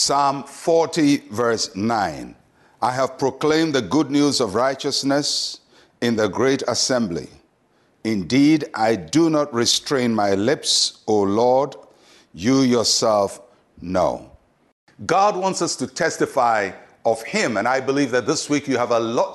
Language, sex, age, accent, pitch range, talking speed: English, male, 60-79, Nigerian, 120-155 Hz, 140 wpm